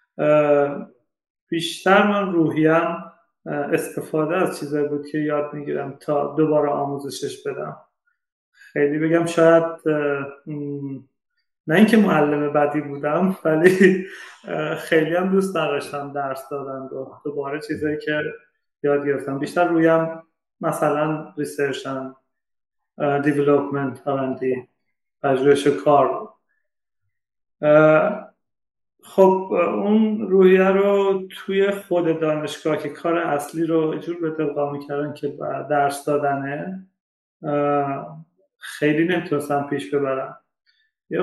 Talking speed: 105 wpm